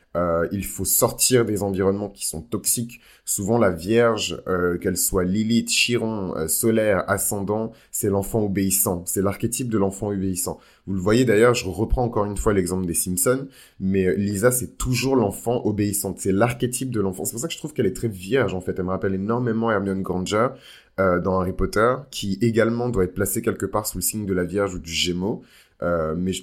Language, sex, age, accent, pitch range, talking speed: French, male, 20-39, French, 95-115 Hz, 205 wpm